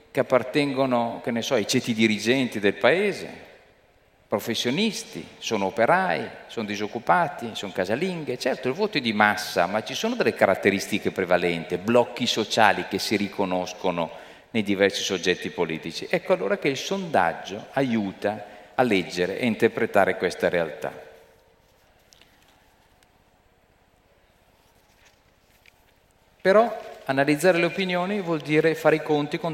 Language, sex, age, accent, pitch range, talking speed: Italian, male, 40-59, native, 95-155 Hz, 120 wpm